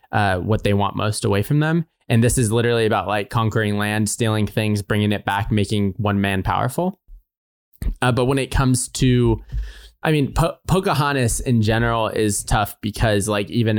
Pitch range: 100-130 Hz